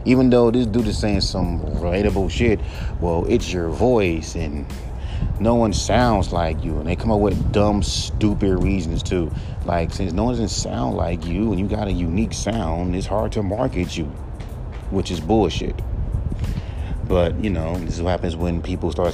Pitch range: 85-100 Hz